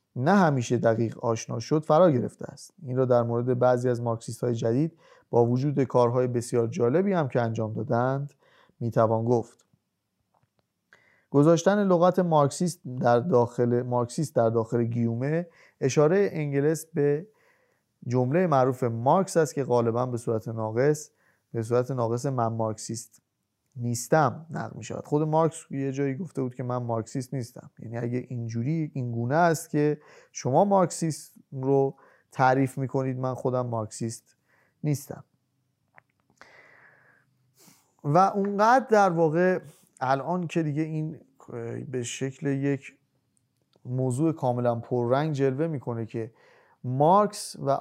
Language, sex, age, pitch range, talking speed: Persian, male, 30-49, 120-160 Hz, 125 wpm